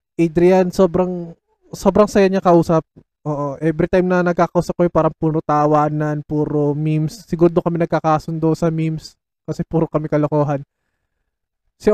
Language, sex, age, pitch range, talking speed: Filipino, male, 20-39, 145-175 Hz, 135 wpm